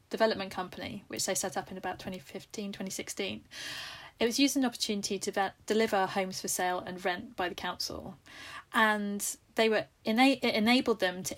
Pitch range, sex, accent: 190-220 Hz, female, British